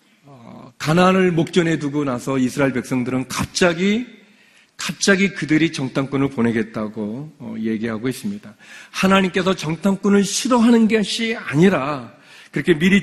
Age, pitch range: 40-59, 140-205 Hz